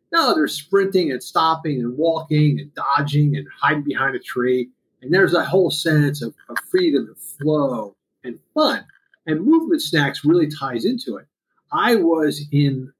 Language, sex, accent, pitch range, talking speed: English, male, American, 140-205 Hz, 165 wpm